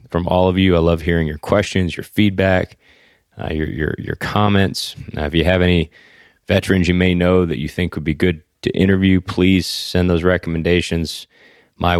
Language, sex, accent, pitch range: English, male, American, 85-95 Hz